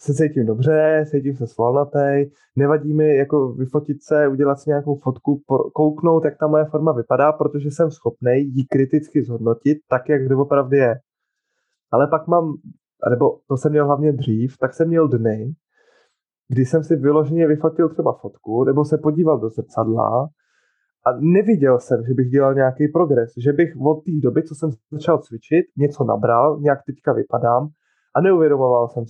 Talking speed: 170 wpm